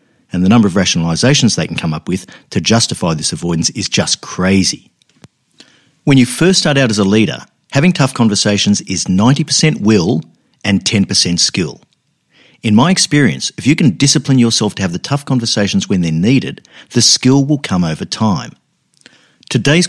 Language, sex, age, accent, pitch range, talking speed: English, male, 50-69, Australian, 95-140 Hz, 170 wpm